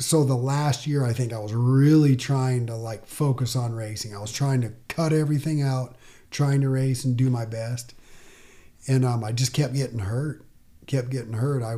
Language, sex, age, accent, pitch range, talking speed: English, male, 40-59, American, 120-140 Hz, 205 wpm